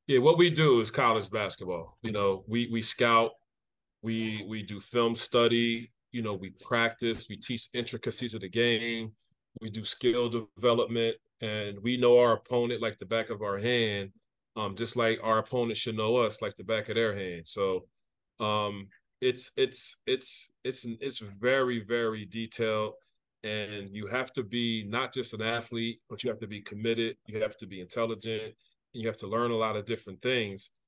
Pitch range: 105-120 Hz